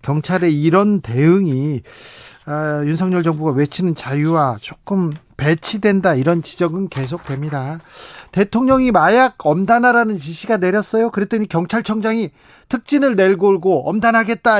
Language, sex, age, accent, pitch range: Korean, male, 40-59, native, 155-225 Hz